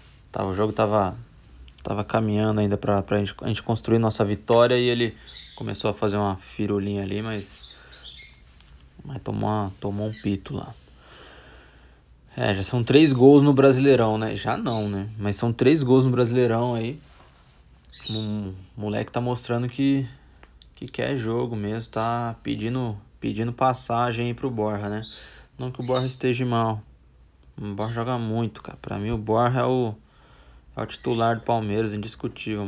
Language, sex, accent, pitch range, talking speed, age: English, male, Brazilian, 100-130 Hz, 160 wpm, 20-39